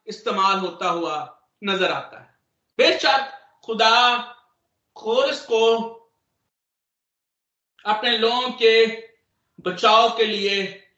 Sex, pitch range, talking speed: male, 175-230 Hz, 85 wpm